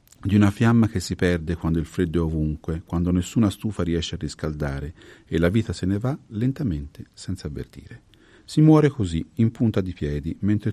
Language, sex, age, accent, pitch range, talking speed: Italian, male, 40-59, native, 85-115 Hz, 190 wpm